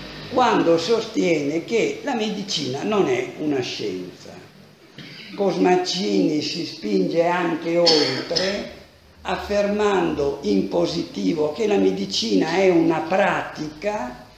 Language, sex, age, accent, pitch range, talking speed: Italian, male, 60-79, native, 150-200 Hz, 95 wpm